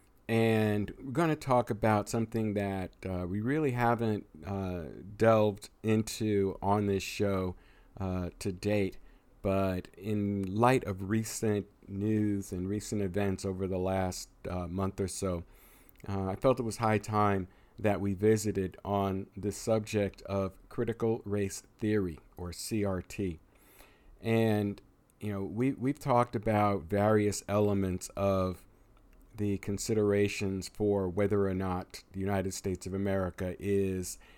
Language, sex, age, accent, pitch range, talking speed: English, male, 50-69, American, 95-110 Hz, 135 wpm